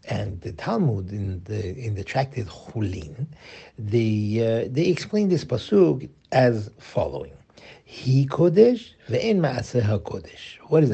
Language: English